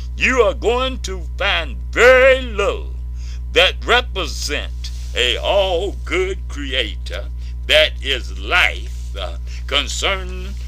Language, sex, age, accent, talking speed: English, male, 60-79, American, 95 wpm